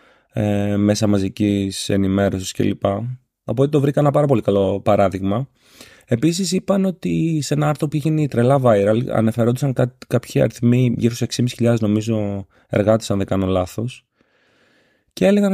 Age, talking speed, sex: 30-49, 145 wpm, male